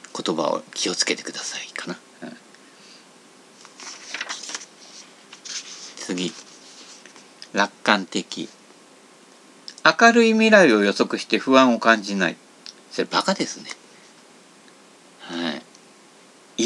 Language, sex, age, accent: Japanese, male, 50-69, native